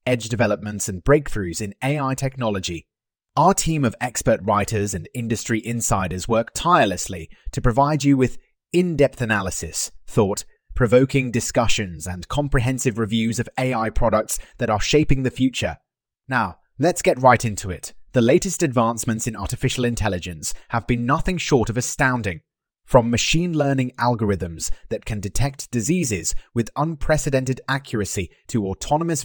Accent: British